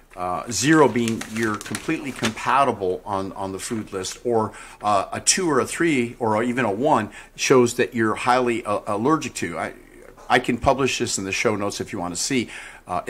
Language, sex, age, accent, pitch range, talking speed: English, male, 50-69, American, 105-140 Hz, 200 wpm